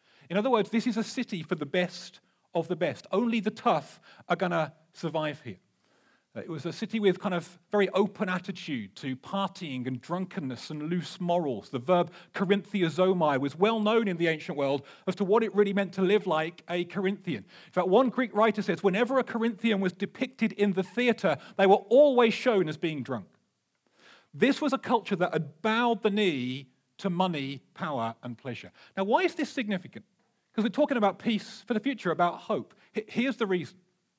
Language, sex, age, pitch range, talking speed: English, male, 40-59, 165-225 Hz, 195 wpm